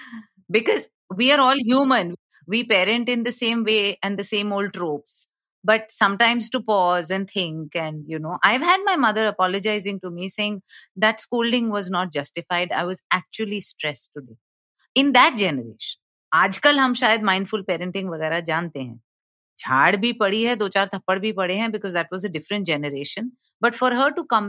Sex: female